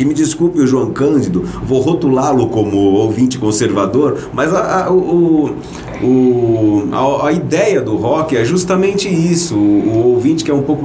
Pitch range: 110-165 Hz